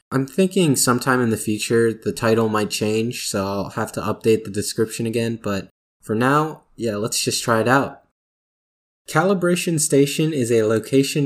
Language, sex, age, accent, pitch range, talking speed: English, male, 20-39, American, 105-135 Hz, 170 wpm